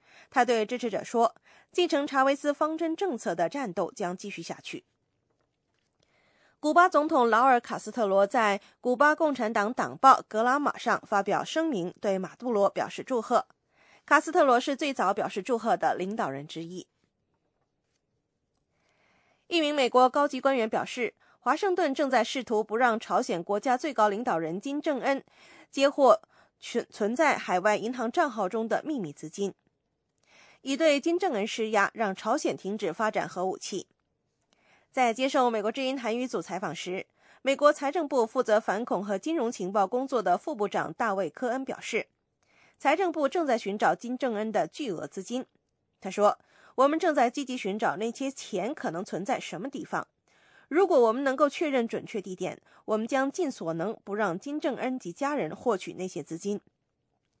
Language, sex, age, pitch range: English, female, 20-39, 205-280 Hz